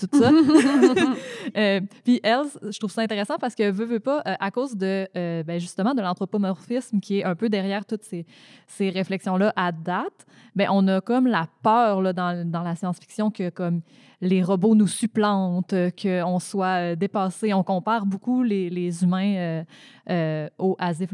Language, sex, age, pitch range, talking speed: French, female, 20-39, 180-215 Hz, 180 wpm